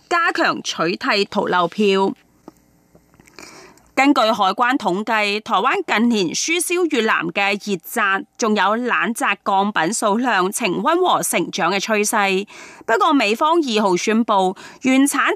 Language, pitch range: Chinese, 195-305 Hz